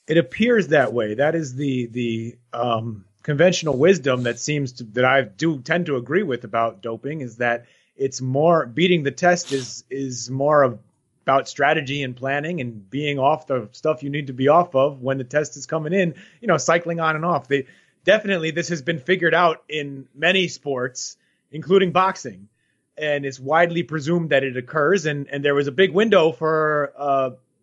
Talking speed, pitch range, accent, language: 195 wpm, 135-175 Hz, American, English